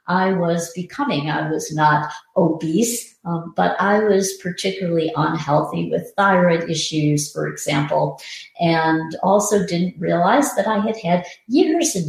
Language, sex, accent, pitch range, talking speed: English, female, American, 160-195 Hz, 140 wpm